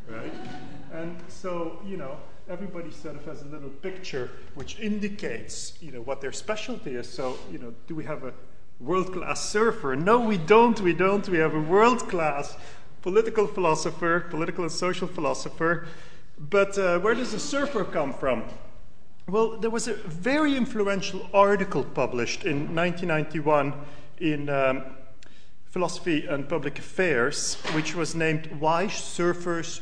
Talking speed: 145 wpm